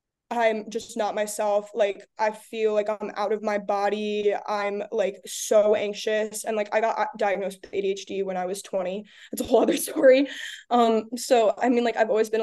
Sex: female